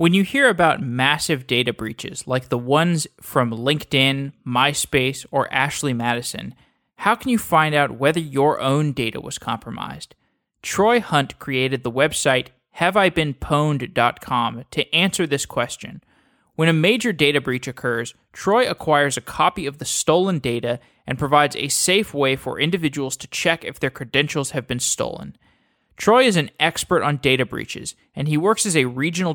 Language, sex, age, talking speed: English, male, 20-39, 160 wpm